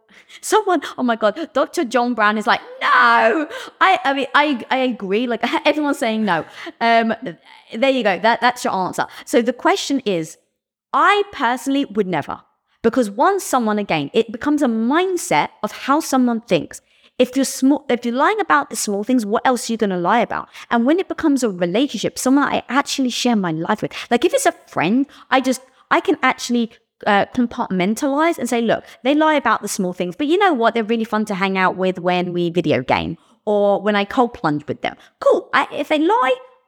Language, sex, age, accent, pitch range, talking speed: English, female, 20-39, British, 215-300 Hz, 205 wpm